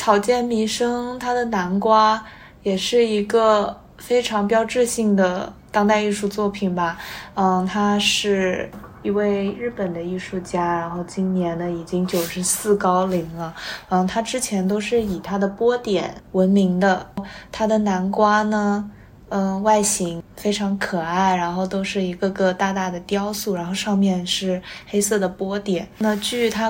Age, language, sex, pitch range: 20-39, Chinese, female, 185-210 Hz